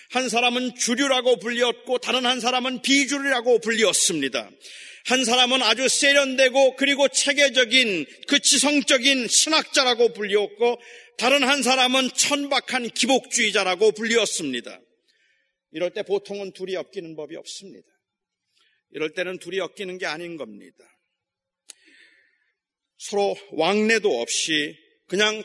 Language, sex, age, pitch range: Korean, male, 40-59, 195-260 Hz